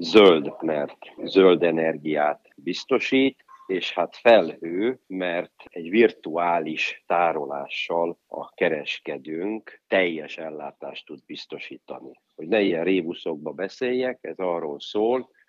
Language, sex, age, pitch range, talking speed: Hungarian, male, 50-69, 75-95 Hz, 100 wpm